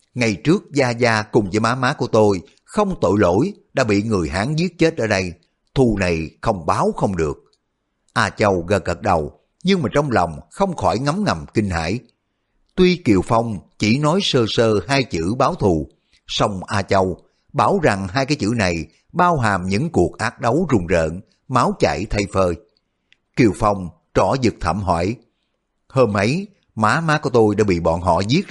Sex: male